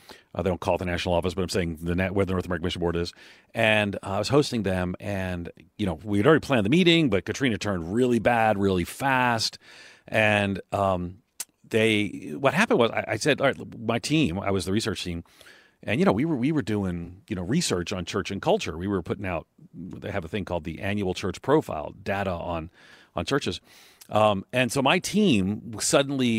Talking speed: 225 wpm